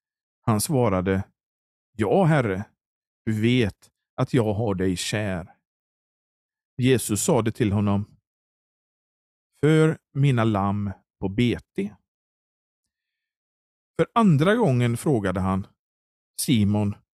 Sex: male